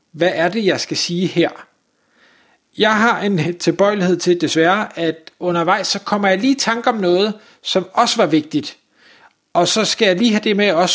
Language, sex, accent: Danish, male, native